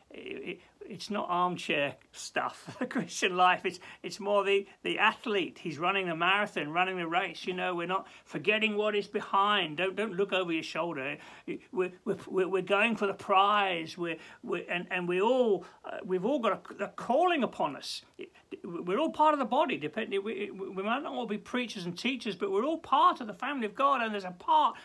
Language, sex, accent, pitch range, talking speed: English, male, British, 165-250 Hz, 215 wpm